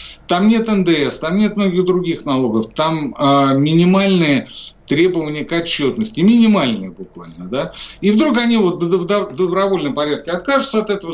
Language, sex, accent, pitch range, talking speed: Russian, male, native, 130-195 Hz, 145 wpm